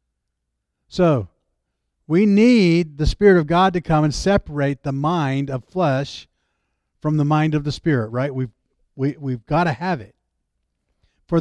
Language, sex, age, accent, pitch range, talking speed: English, male, 50-69, American, 105-165 Hz, 145 wpm